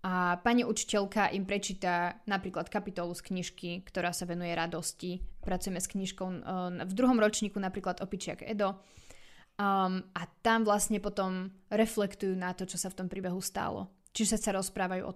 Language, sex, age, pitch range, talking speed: Slovak, female, 20-39, 185-215 Hz, 160 wpm